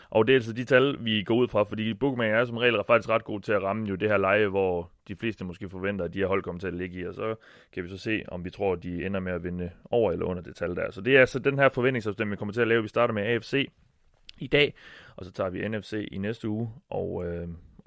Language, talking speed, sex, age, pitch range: Danish, 295 wpm, male, 30-49, 95-115 Hz